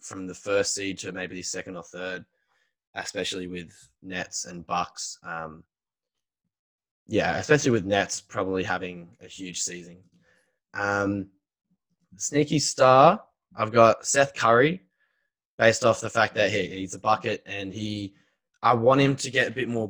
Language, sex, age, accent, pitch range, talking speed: English, male, 10-29, Australian, 95-115 Hz, 155 wpm